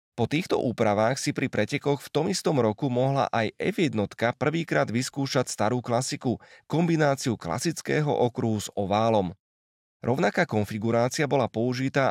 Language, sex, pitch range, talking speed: Slovak, male, 110-135 Hz, 135 wpm